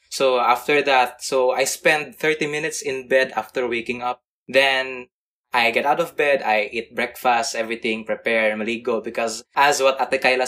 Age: 20-39